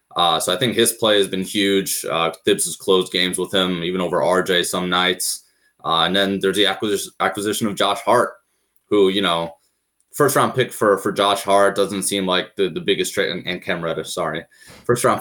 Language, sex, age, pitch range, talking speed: English, male, 20-39, 90-100 Hz, 200 wpm